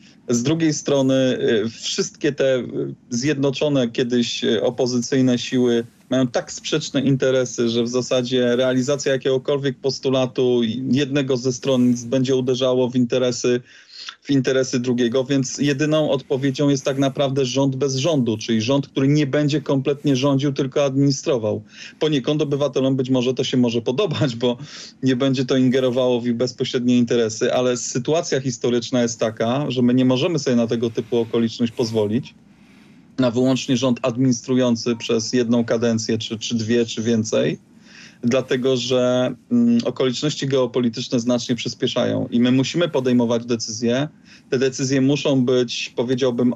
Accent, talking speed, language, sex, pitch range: native, 135 wpm, Polish, male, 125-140 Hz